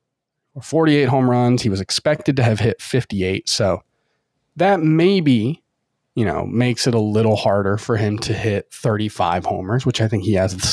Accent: American